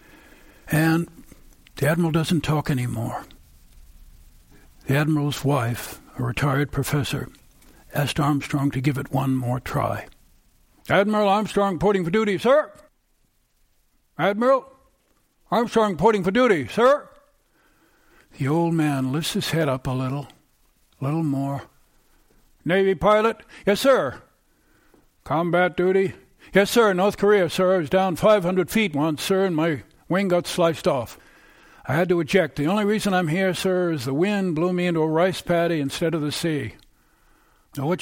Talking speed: 145 wpm